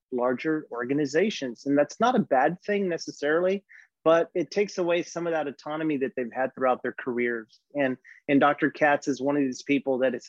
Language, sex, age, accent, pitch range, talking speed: English, male, 30-49, American, 130-150 Hz, 200 wpm